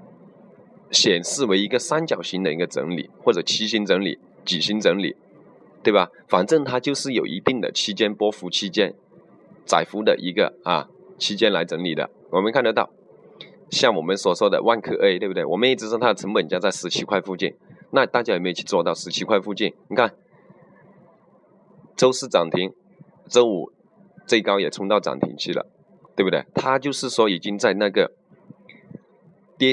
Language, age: Chinese, 20-39